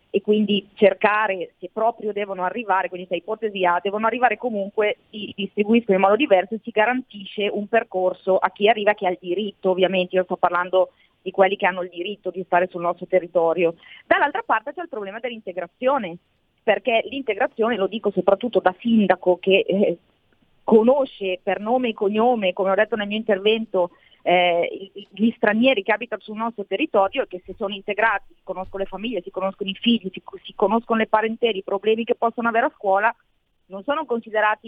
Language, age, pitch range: Italian, 30-49, 190-225 Hz